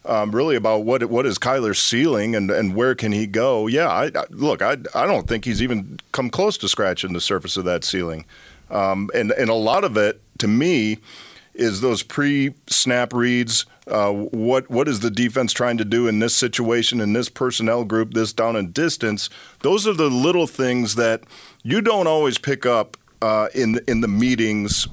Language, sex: English, male